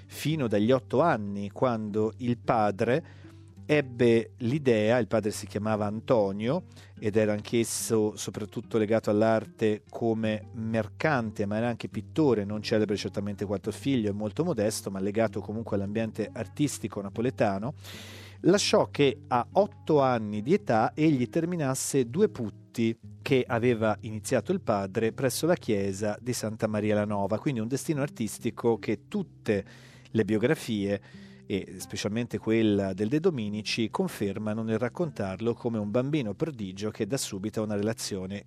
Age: 40-59